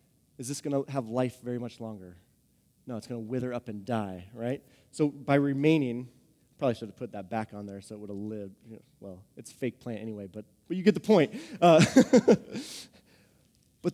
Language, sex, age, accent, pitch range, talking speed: English, male, 30-49, American, 130-180 Hz, 205 wpm